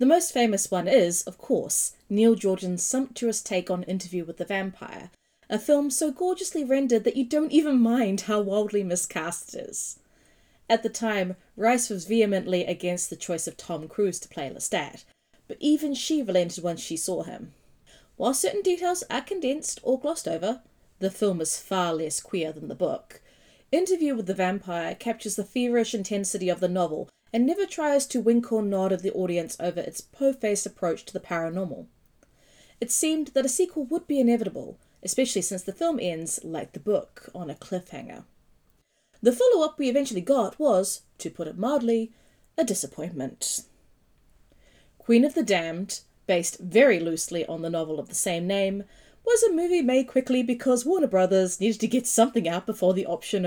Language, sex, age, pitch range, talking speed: English, female, 20-39, 180-260 Hz, 180 wpm